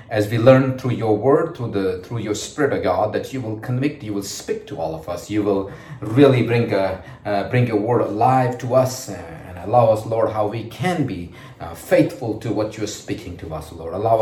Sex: male